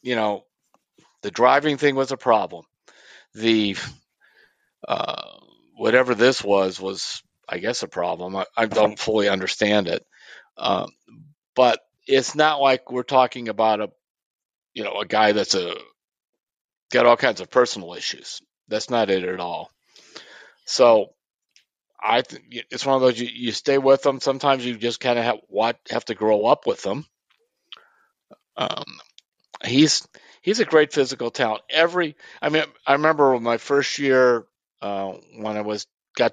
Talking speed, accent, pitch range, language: 155 wpm, American, 105-140 Hz, English